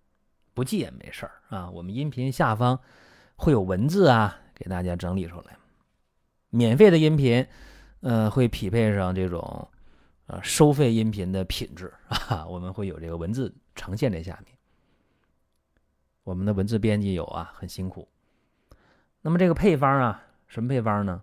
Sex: male